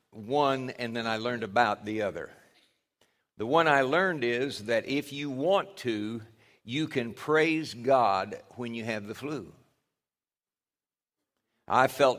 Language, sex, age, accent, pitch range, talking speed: English, male, 60-79, American, 115-155 Hz, 145 wpm